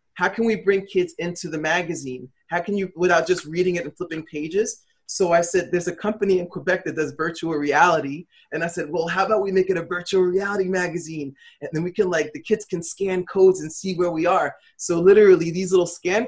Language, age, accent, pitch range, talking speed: English, 30-49, American, 150-180 Hz, 230 wpm